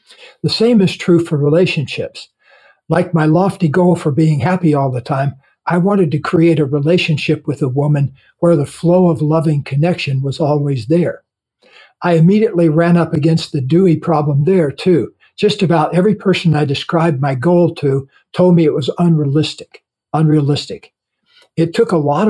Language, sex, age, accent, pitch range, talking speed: English, male, 60-79, American, 145-170 Hz, 170 wpm